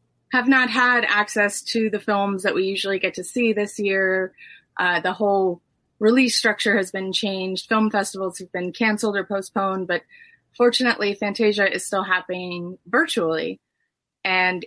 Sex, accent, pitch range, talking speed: female, American, 185-250 Hz, 155 wpm